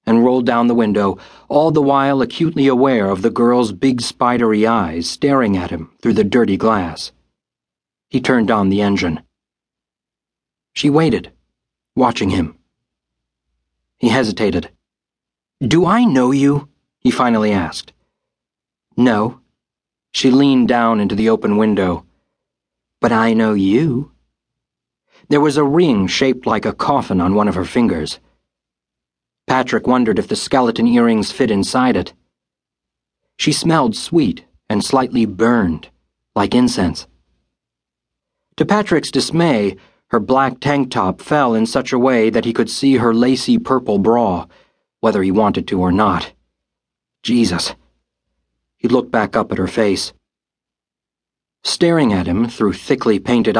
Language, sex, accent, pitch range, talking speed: English, male, American, 95-135 Hz, 140 wpm